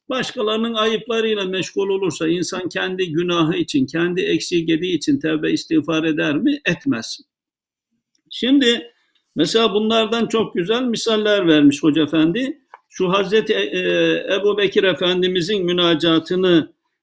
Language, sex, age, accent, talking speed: Turkish, male, 60-79, native, 105 wpm